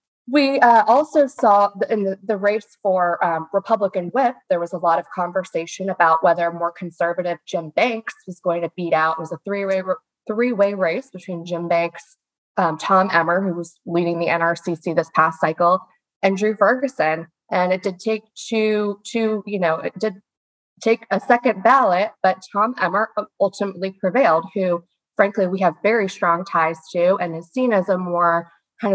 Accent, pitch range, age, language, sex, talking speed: American, 175-220 Hz, 20-39, English, female, 175 wpm